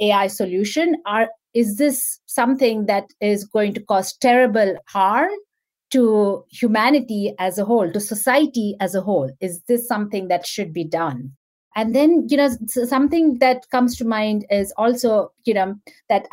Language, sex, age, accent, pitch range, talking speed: English, female, 50-69, Indian, 210-285 Hz, 160 wpm